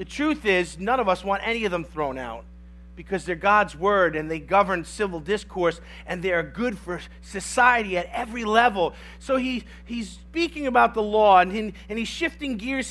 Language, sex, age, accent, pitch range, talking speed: English, male, 40-59, American, 190-270 Hz, 190 wpm